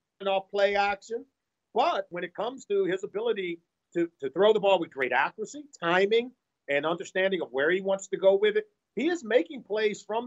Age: 50-69